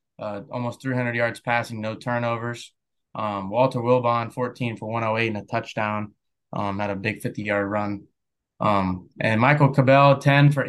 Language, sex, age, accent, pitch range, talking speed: English, male, 20-39, American, 115-135 Hz, 155 wpm